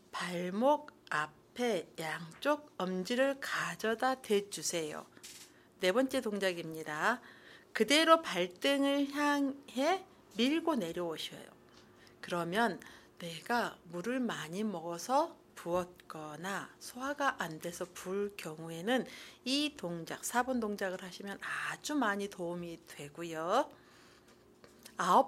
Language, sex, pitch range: Korean, female, 180-270 Hz